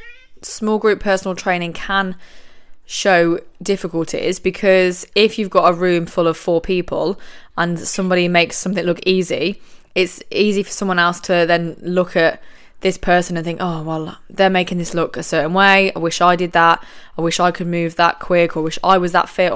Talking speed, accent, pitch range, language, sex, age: 195 wpm, British, 165-195 Hz, English, female, 20-39